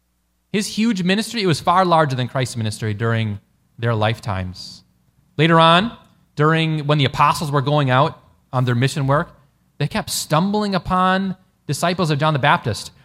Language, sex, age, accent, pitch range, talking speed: English, male, 30-49, American, 125-185 Hz, 160 wpm